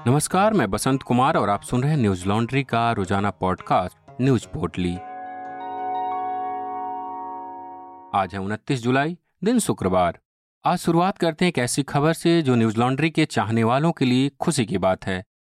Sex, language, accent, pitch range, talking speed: male, Hindi, native, 115-165 Hz, 155 wpm